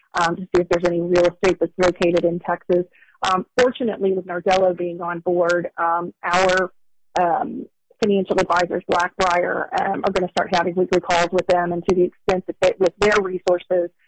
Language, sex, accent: English, female, American